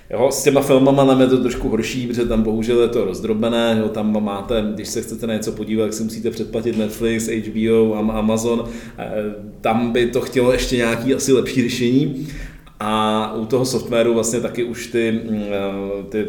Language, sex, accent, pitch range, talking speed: Czech, male, native, 105-120 Hz, 185 wpm